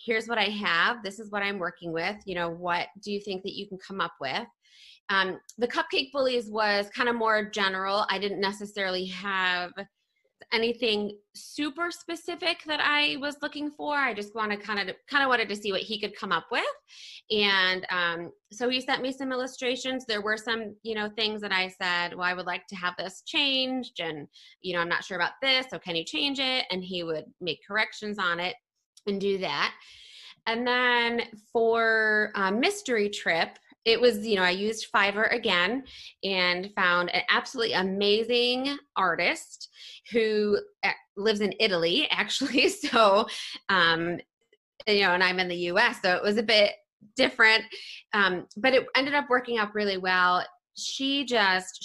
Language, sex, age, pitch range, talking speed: English, female, 20-39, 185-250 Hz, 180 wpm